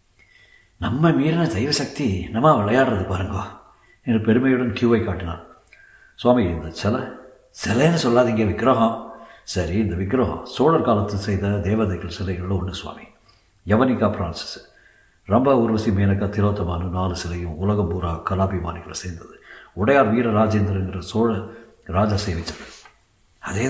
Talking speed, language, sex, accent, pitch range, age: 110 wpm, Tamil, male, native, 95-115 Hz, 60-79